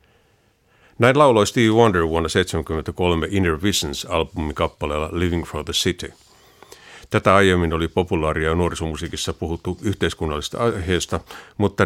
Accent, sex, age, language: native, male, 50-69, Finnish